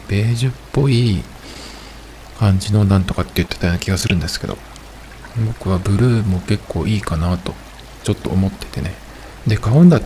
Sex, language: male, Japanese